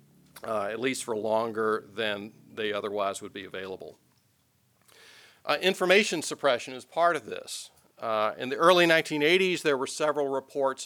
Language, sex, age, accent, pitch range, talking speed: English, male, 40-59, American, 105-135 Hz, 150 wpm